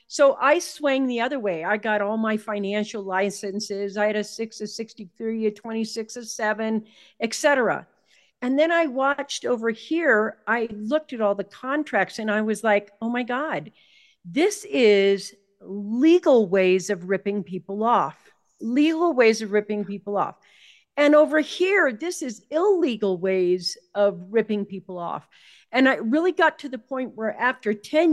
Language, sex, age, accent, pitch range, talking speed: English, female, 50-69, American, 205-275 Hz, 165 wpm